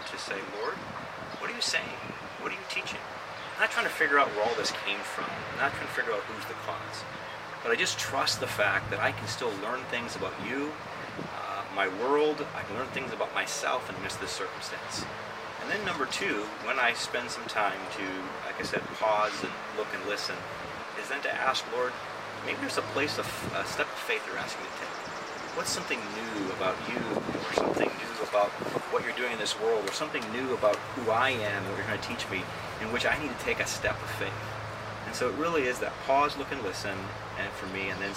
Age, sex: 30-49, male